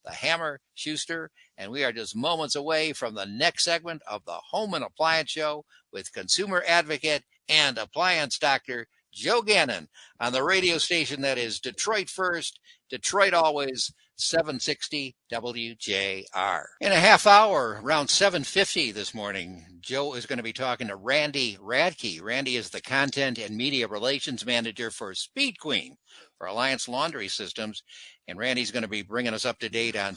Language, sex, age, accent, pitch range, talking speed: English, male, 60-79, American, 115-165 Hz, 165 wpm